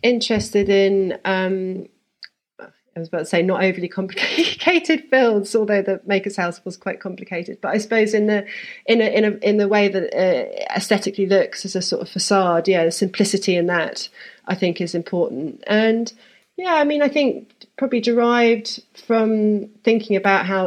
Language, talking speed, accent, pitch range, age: English, 170 wpm, British, 150-200 Hz, 30-49